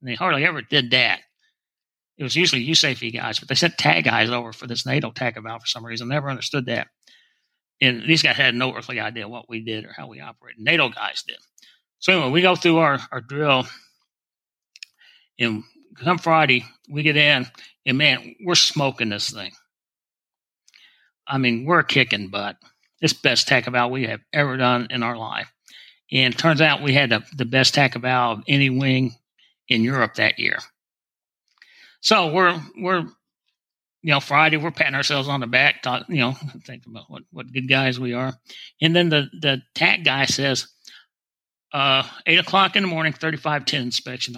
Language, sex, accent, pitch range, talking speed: English, male, American, 120-155 Hz, 190 wpm